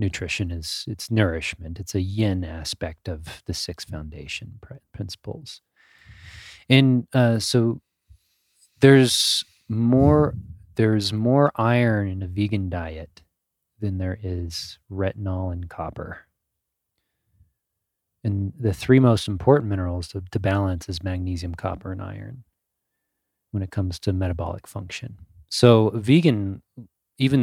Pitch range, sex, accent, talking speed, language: 90-115 Hz, male, American, 120 wpm, English